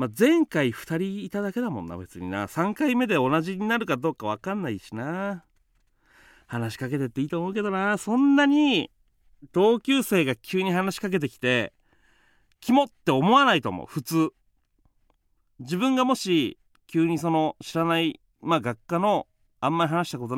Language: Japanese